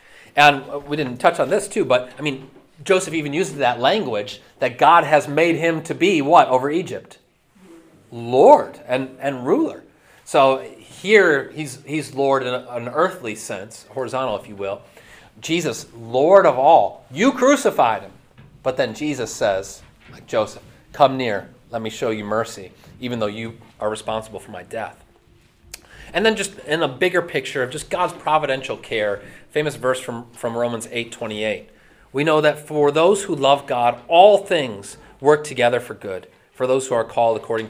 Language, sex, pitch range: English, male, 125-155 Hz